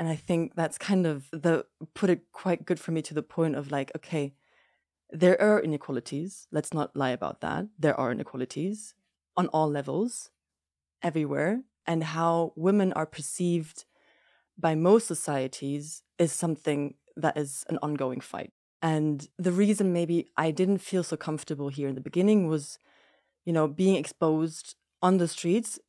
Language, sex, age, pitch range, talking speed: English, female, 20-39, 145-175 Hz, 160 wpm